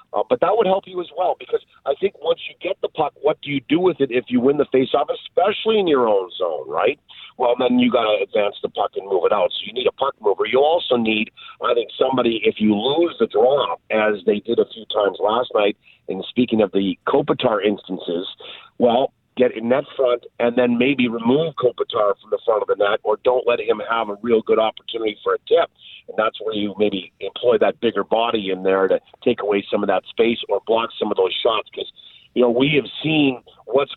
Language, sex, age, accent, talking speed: English, male, 50-69, American, 240 wpm